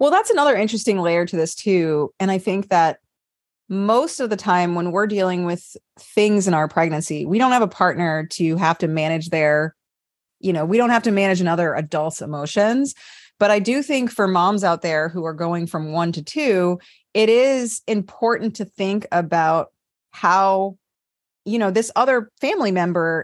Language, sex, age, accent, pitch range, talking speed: English, female, 30-49, American, 170-215 Hz, 185 wpm